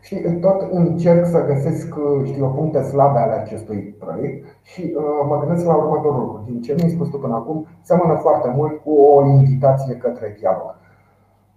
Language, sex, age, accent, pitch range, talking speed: Romanian, male, 30-49, native, 125-165 Hz, 160 wpm